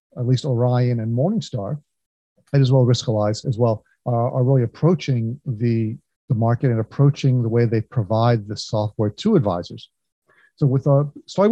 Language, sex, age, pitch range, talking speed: English, male, 40-59, 115-145 Hz, 165 wpm